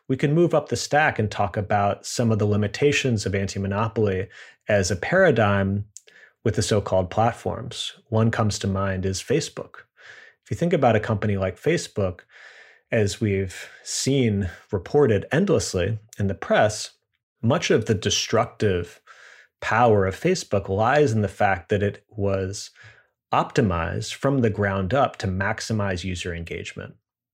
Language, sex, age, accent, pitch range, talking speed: English, male, 30-49, American, 100-120 Hz, 145 wpm